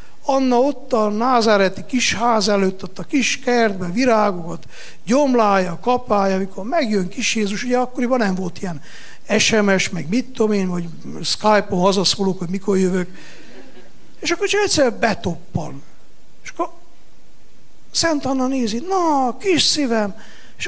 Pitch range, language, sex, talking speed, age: 200-280 Hz, Hungarian, male, 135 wpm, 60-79